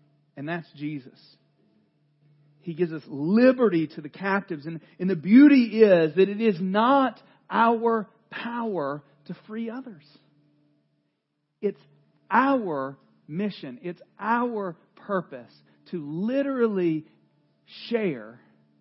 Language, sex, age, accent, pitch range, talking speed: English, male, 40-59, American, 145-235 Hz, 105 wpm